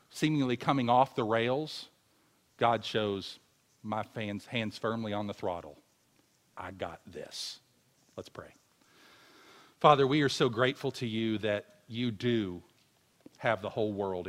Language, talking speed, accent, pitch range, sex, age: English, 135 wpm, American, 105-130 Hz, male, 40-59